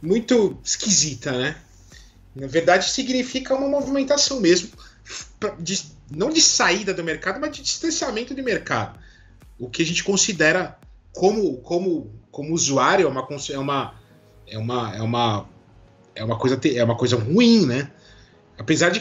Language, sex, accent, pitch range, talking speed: Portuguese, male, Brazilian, 125-200 Hz, 140 wpm